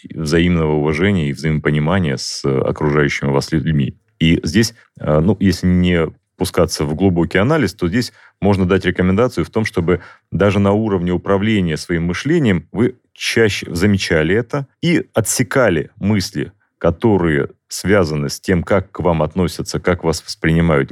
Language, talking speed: Russian, 140 wpm